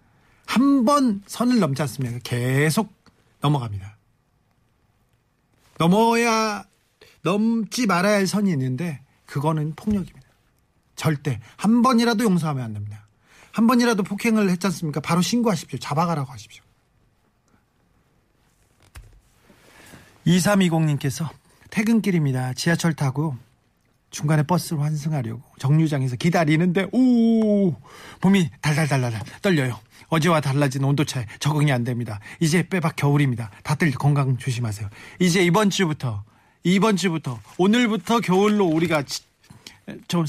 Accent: native